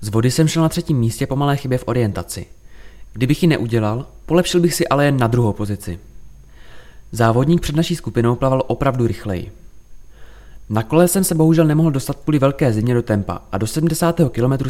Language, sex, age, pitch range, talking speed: Czech, male, 20-39, 105-145 Hz, 190 wpm